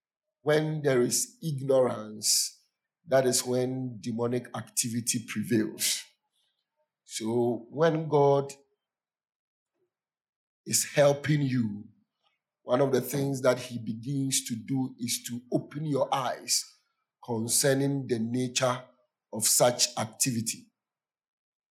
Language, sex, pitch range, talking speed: English, male, 120-140 Hz, 100 wpm